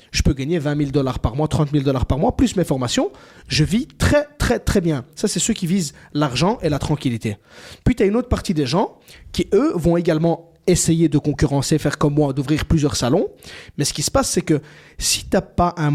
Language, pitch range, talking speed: French, 140-185 Hz, 235 wpm